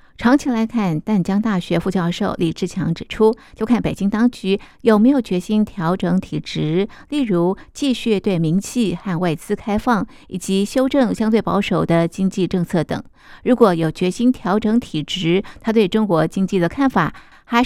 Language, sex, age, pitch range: Chinese, female, 50-69, 175-220 Hz